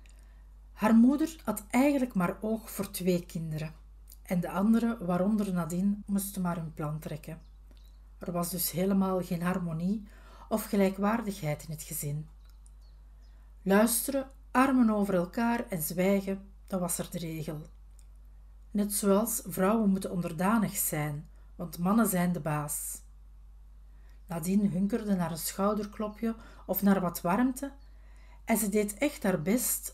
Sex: female